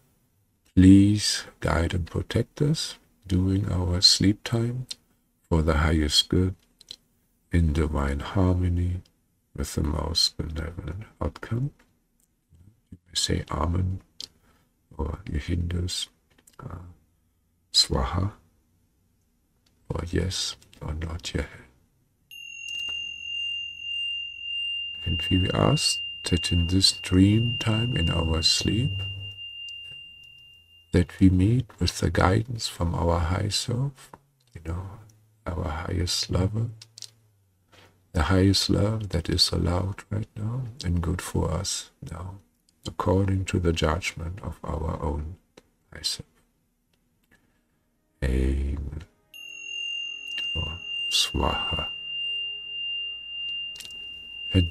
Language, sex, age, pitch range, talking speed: English, male, 50-69, 80-100 Hz, 90 wpm